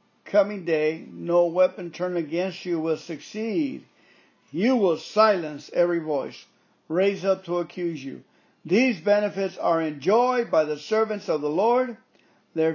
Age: 50-69